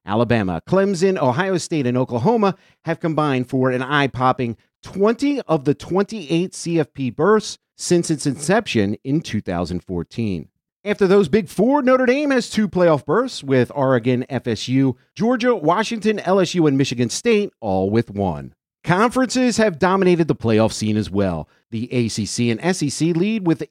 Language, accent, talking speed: English, American, 150 wpm